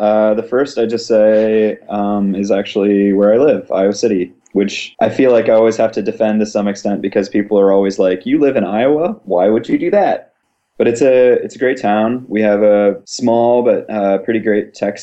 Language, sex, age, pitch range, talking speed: English, male, 20-39, 100-115 Hz, 225 wpm